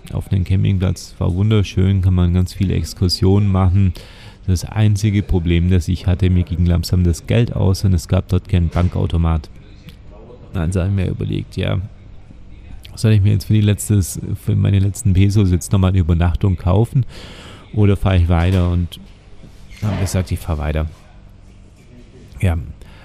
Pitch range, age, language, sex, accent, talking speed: 90-105 Hz, 30-49, German, male, German, 170 wpm